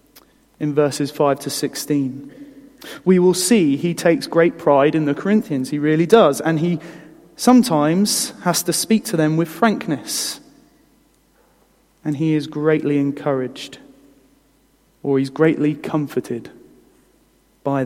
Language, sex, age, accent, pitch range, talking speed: English, male, 30-49, British, 145-195 Hz, 130 wpm